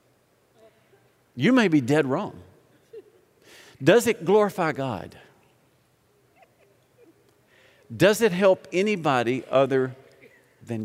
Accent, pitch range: American, 120-160 Hz